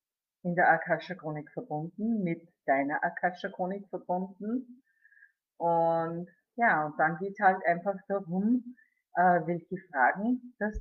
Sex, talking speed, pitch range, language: female, 110 wpm, 170-230 Hz, German